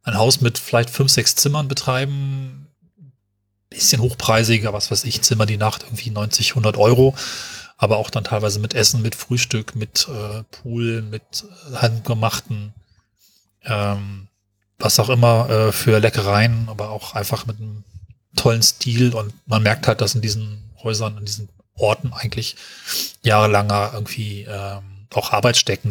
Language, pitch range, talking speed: German, 105-120 Hz, 150 wpm